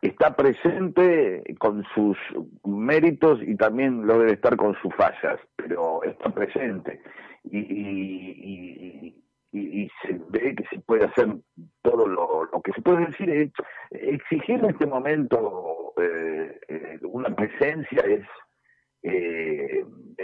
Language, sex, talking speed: Spanish, male, 125 wpm